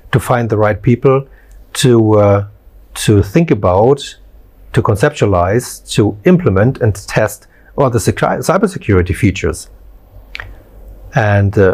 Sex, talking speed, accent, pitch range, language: male, 120 wpm, German, 100-130 Hz, English